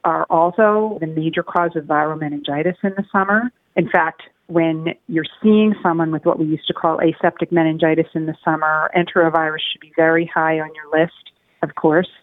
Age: 40-59